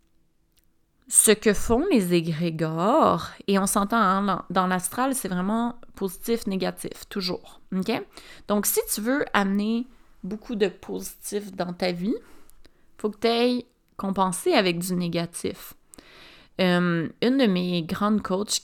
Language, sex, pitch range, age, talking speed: French, female, 175-215 Hz, 30-49, 135 wpm